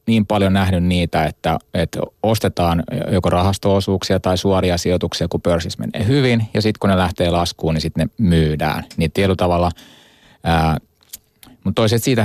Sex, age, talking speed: male, 30-49, 145 wpm